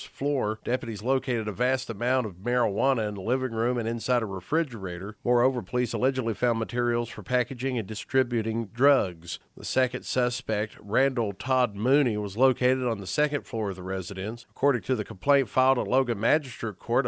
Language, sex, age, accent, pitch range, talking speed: English, male, 40-59, American, 115-140 Hz, 175 wpm